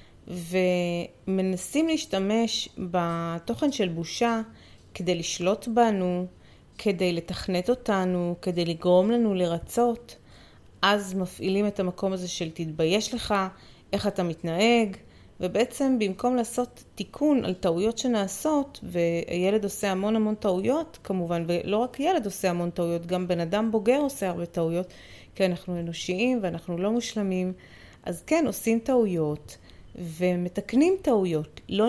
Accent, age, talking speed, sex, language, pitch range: native, 30-49, 120 wpm, female, Hebrew, 175-215 Hz